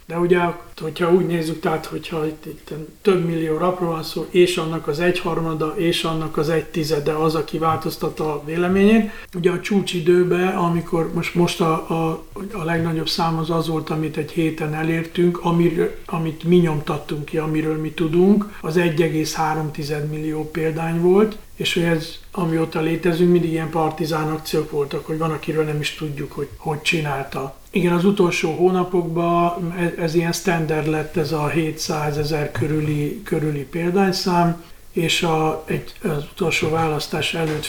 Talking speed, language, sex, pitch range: 160 wpm, Hungarian, male, 155-175 Hz